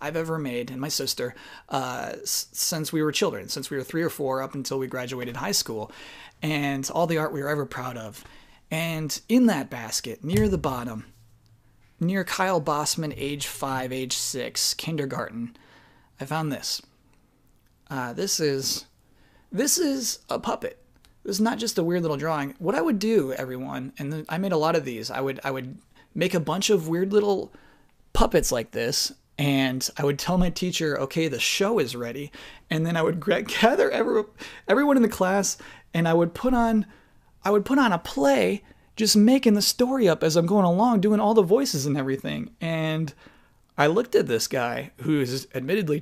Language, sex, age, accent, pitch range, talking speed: English, male, 30-49, American, 135-185 Hz, 190 wpm